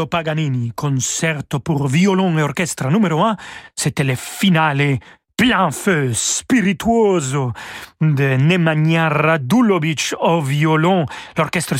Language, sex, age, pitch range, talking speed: French, male, 40-59, 150-180 Hz, 100 wpm